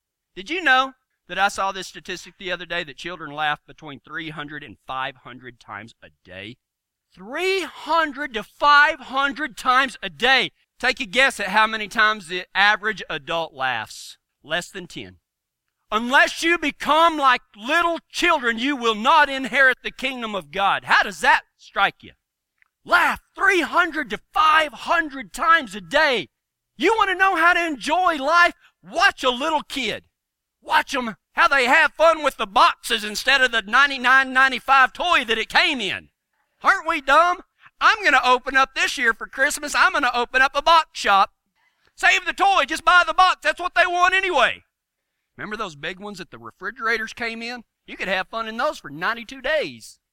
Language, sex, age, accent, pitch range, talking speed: English, male, 40-59, American, 195-310 Hz, 175 wpm